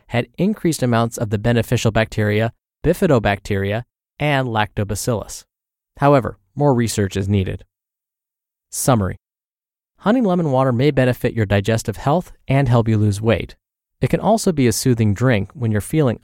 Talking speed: 145 wpm